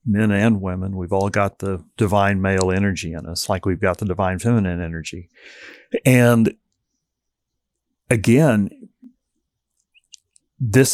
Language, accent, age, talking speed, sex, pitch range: English, American, 40-59, 120 wpm, male, 95-125 Hz